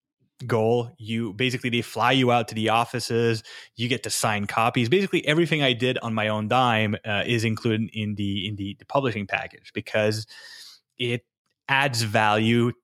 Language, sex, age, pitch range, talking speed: English, male, 20-39, 105-130 Hz, 175 wpm